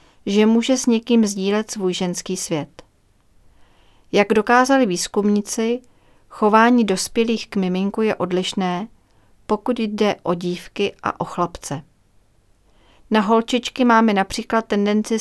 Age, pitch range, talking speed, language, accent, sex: 40-59, 185-220 Hz, 115 wpm, Czech, native, female